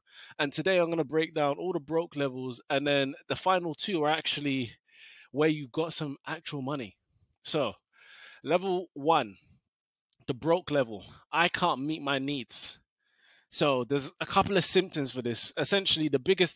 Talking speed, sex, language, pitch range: 165 wpm, male, English, 130-160 Hz